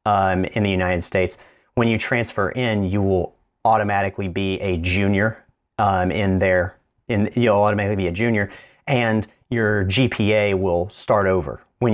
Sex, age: male, 30-49